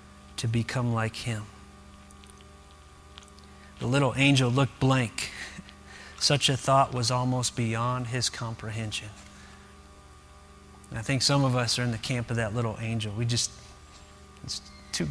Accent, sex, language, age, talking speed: American, male, English, 30-49, 135 wpm